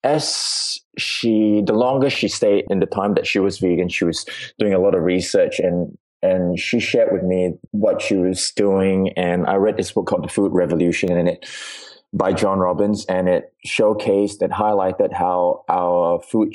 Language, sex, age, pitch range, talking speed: English, male, 20-39, 85-95 Hz, 190 wpm